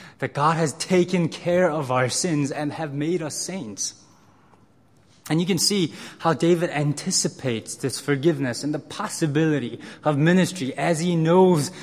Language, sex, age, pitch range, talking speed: English, male, 20-39, 145-180 Hz, 150 wpm